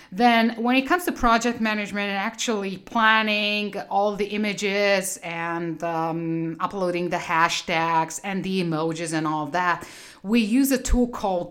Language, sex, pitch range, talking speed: English, female, 170-215 Hz, 150 wpm